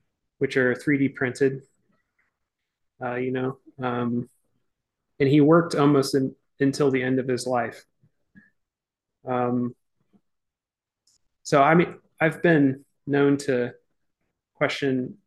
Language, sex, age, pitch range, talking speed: English, male, 30-49, 125-145 Hz, 110 wpm